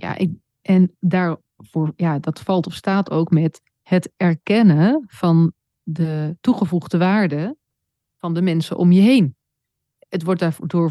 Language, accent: Dutch, Dutch